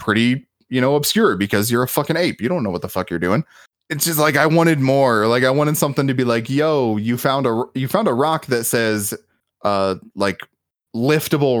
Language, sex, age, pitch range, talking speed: English, male, 20-39, 105-150 Hz, 220 wpm